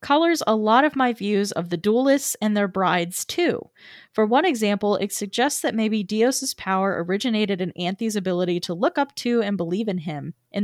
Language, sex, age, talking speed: English, female, 20-39, 195 wpm